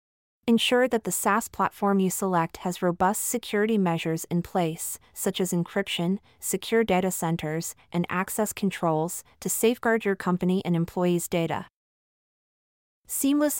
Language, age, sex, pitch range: English, 30-49, female, 170-215 Hz